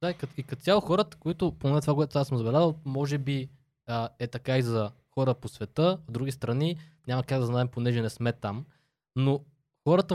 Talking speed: 205 wpm